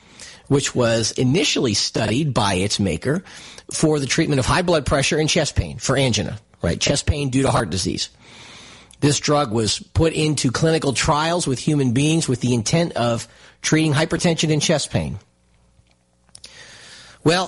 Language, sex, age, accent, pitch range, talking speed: English, male, 50-69, American, 115-160 Hz, 160 wpm